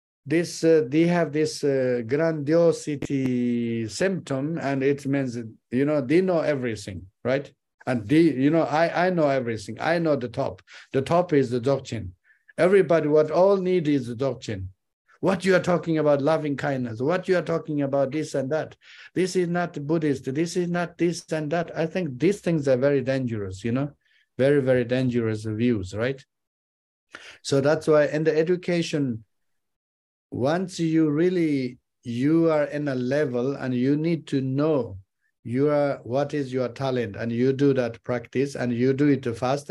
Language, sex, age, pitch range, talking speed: English, male, 50-69, 120-155 Hz, 175 wpm